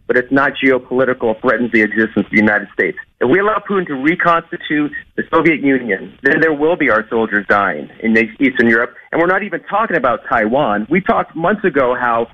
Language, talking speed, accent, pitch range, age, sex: English, 205 wpm, American, 115-145 Hz, 40-59, male